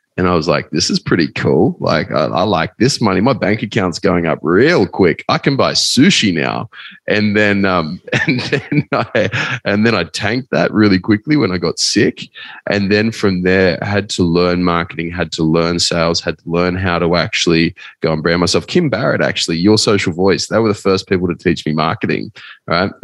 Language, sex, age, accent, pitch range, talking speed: English, male, 20-39, Australian, 90-105 Hz, 215 wpm